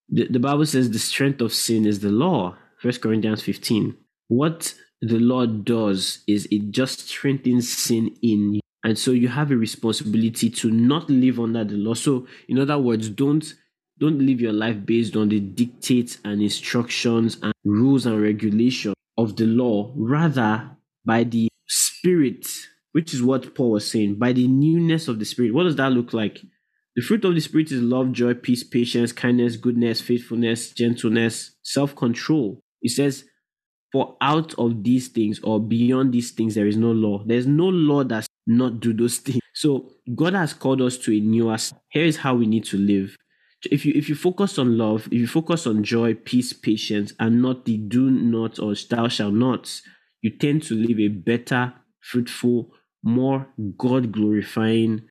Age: 20-39